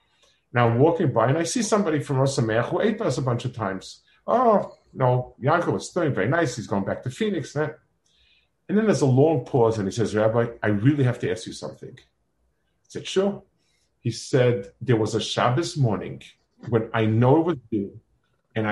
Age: 50-69